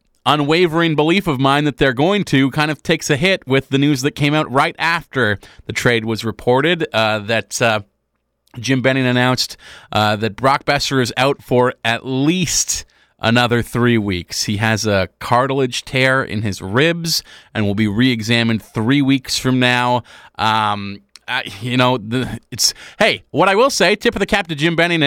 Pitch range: 115-140 Hz